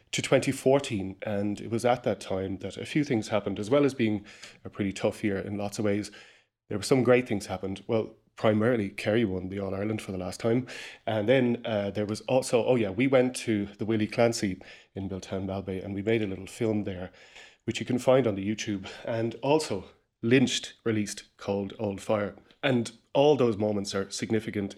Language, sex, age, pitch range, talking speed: English, male, 30-49, 100-115 Hz, 205 wpm